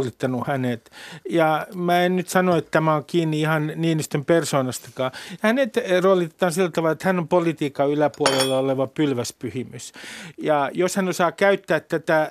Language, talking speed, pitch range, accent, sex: Finnish, 145 wpm, 145-180 Hz, native, male